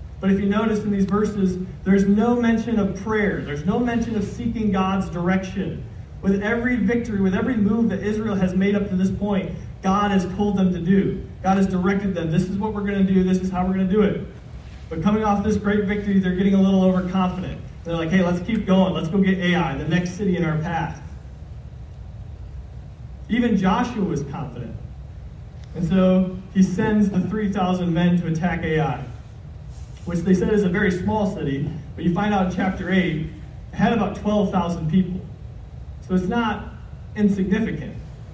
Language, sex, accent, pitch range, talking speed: English, male, American, 175-205 Hz, 195 wpm